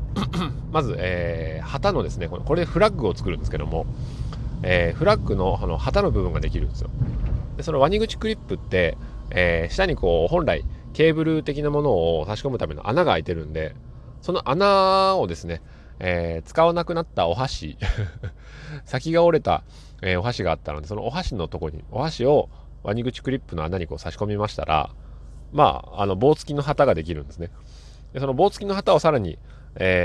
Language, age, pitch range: Japanese, 30-49, 85-140 Hz